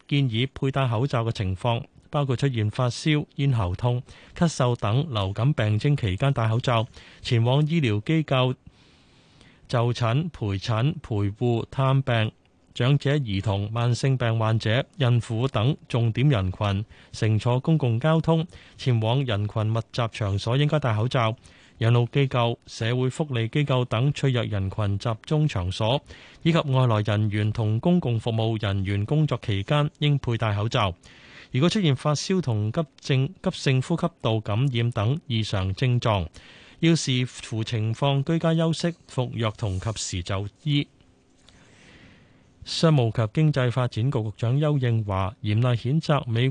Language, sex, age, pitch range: Chinese, male, 30-49, 110-140 Hz